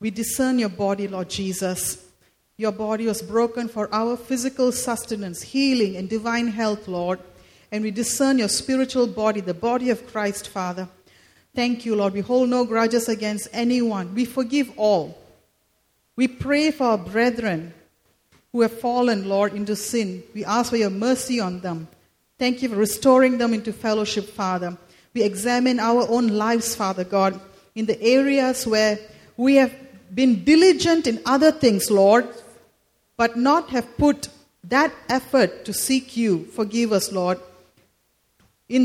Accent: Indian